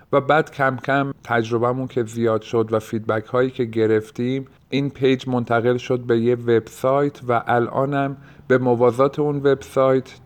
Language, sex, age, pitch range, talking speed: Persian, male, 50-69, 115-135 Hz, 165 wpm